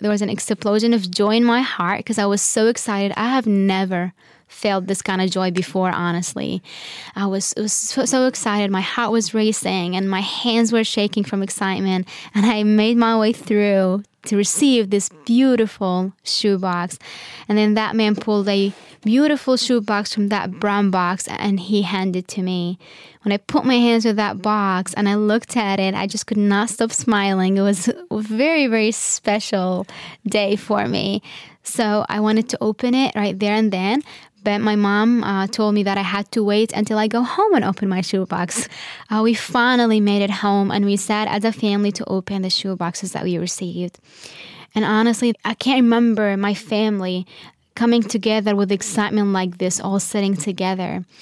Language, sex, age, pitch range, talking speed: English, female, 10-29, 195-225 Hz, 190 wpm